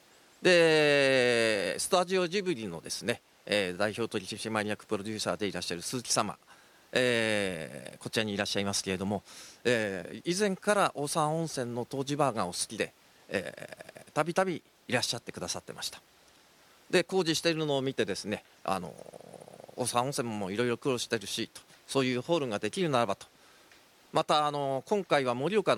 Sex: male